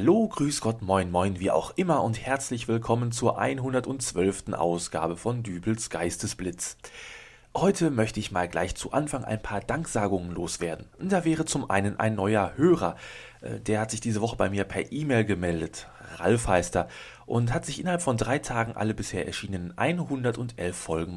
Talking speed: 170 wpm